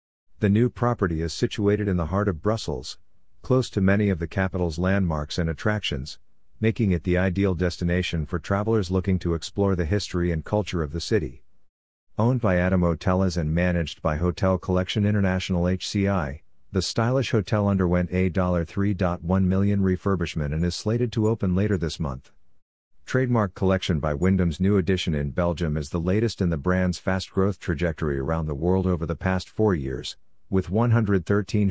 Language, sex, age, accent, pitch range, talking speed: English, male, 50-69, American, 85-100 Hz, 170 wpm